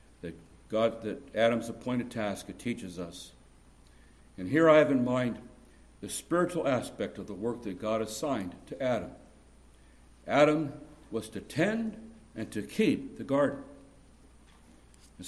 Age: 60-79